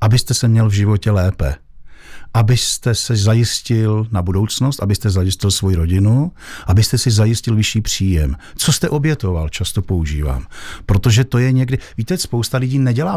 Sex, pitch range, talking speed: male, 95-115 Hz, 150 wpm